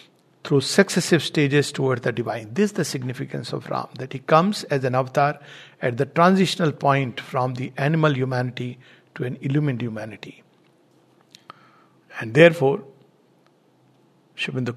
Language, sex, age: English, male, 60-79